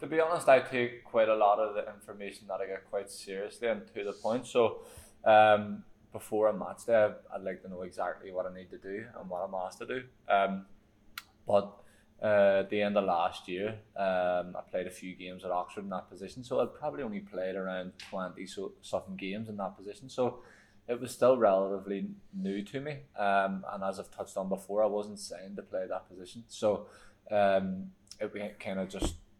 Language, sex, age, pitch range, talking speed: English, male, 20-39, 95-110 Hz, 210 wpm